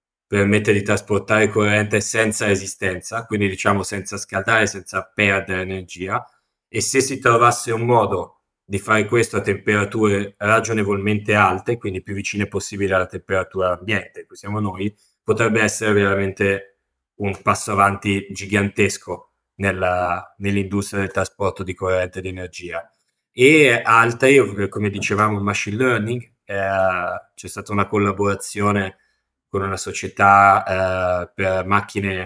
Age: 20-39